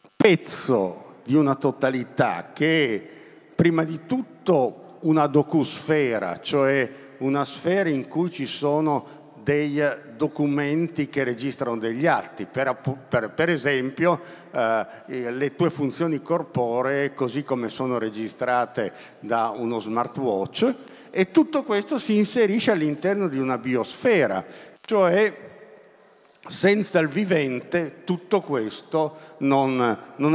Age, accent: 50-69, native